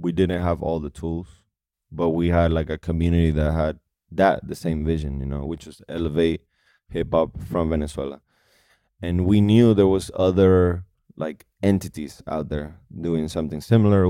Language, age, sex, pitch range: English, 20-39, male, 80-90 Hz